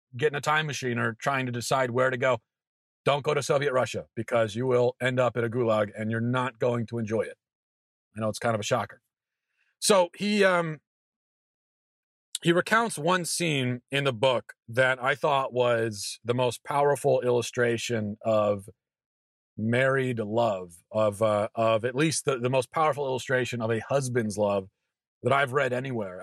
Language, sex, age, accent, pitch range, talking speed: English, male, 40-59, American, 110-140 Hz, 180 wpm